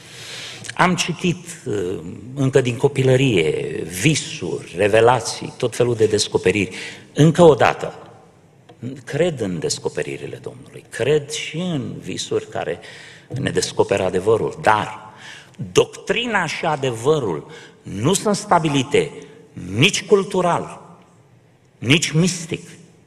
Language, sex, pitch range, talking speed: Romanian, male, 125-165 Hz, 95 wpm